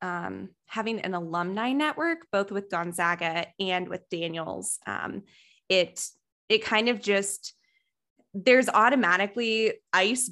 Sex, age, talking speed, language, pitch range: female, 20-39, 115 wpm, English, 175-215 Hz